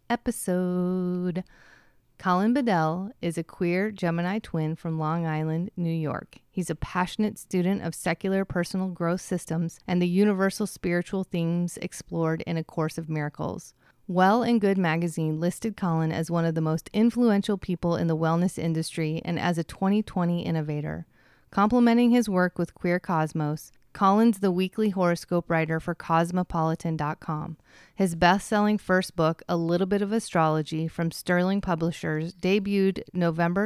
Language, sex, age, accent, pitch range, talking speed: English, female, 30-49, American, 160-190 Hz, 145 wpm